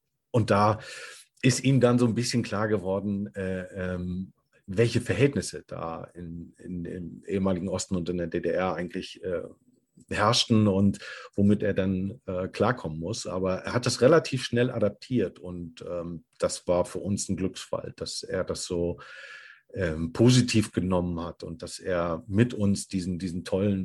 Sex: male